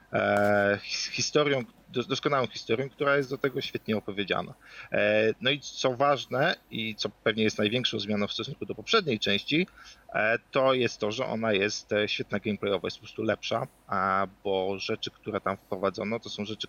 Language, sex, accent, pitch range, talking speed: Polish, male, native, 100-120 Hz, 160 wpm